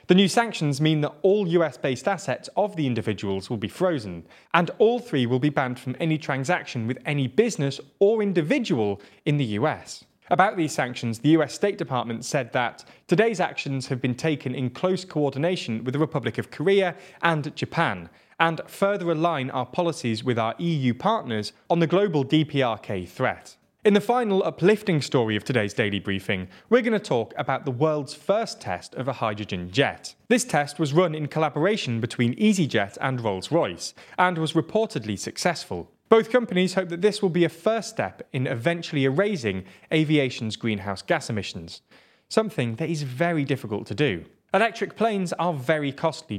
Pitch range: 125-180 Hz